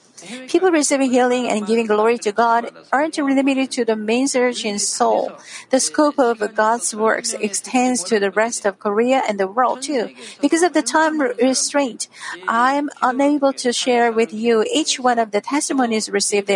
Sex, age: female, 50-69